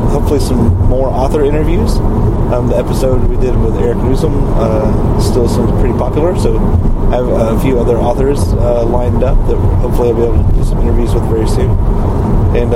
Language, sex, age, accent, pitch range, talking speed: English, male, 30-49, American, 100-115 Hz, 195 wpm